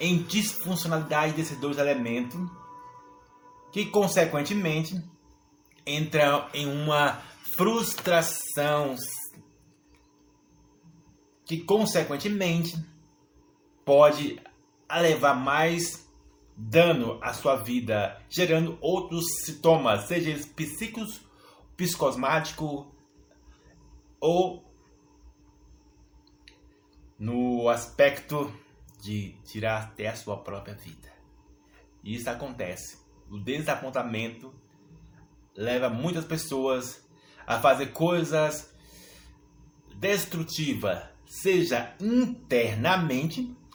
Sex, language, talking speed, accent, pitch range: male, Portuguese, 70 wpm, Brazilian, 120-170 Hz